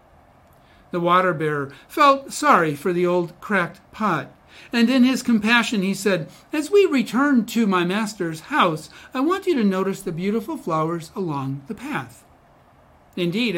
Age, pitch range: 60-79, 175-230 Hz